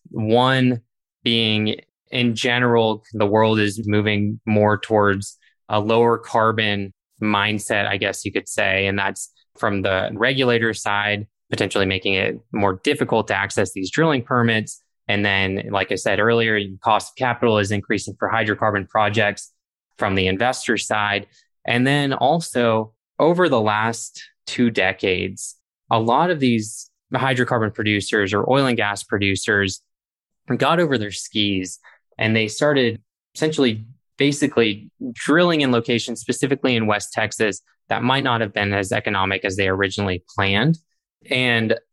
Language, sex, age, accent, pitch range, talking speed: English, male, 20-39, American, 100-120 Hz, 145 wpm